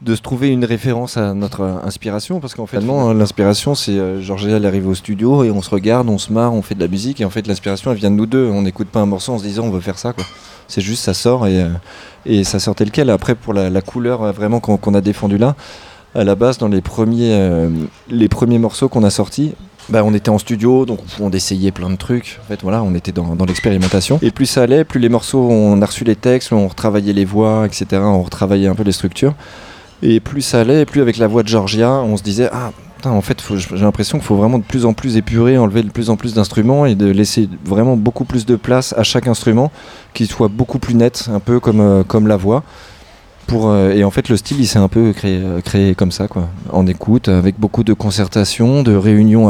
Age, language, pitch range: 20-39, French, 100-120 Hz